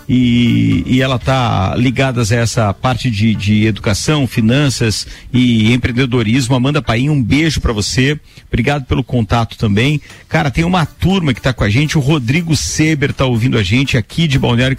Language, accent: Portuguese, Brazilian